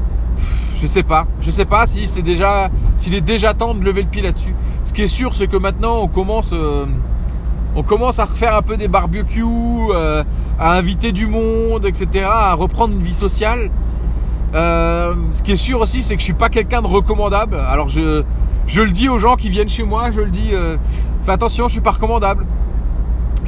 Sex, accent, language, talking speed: male, French, French, 220 wpm